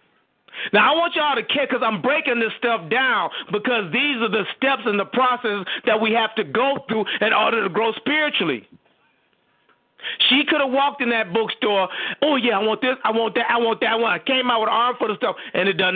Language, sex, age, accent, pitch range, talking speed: English, male, 30-49, American, 200-255 Hz, 230 wpm